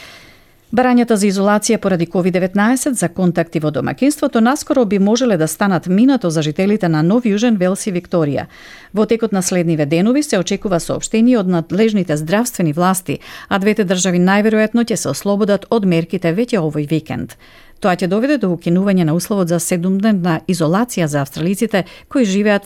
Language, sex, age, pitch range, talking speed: Bulgarian, female, 40-59, 170-215 Hz, 160 wpm